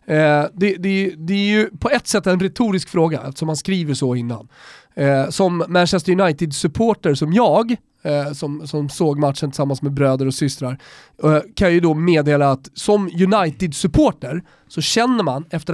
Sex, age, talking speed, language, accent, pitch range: male, 30-49, 160 wpm, Swedish, native, 150-205 Hz